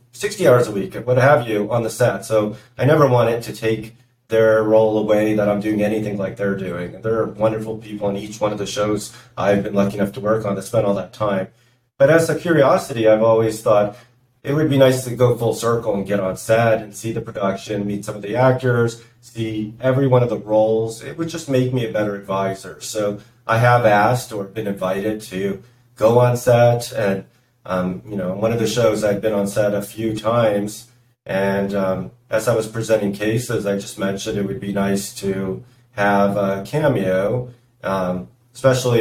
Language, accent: English, American